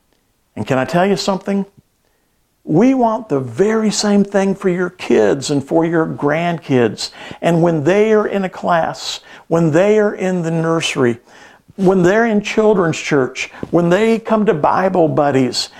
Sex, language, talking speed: male, English, 165 wpm